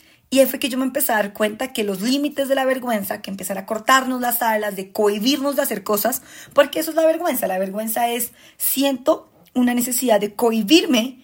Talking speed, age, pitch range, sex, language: 215 wpm, 20-39, 200-265 Hz, female, Spanish